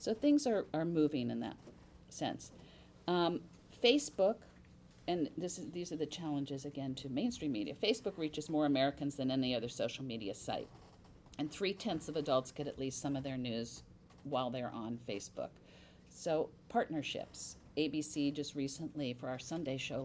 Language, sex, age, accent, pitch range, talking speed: English, female, 50-69, American, 130-160 Hz, 165 wpm